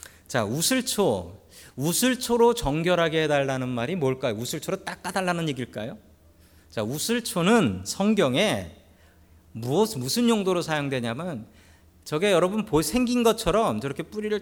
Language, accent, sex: Korean, native, male